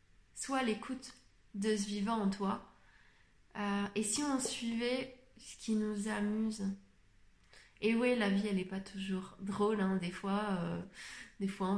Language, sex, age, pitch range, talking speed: French, female, 20-39, 205-250 Hz, 165 wpm